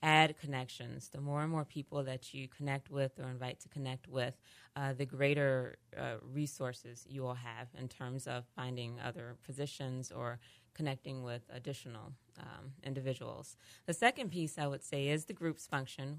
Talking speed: 170 wpm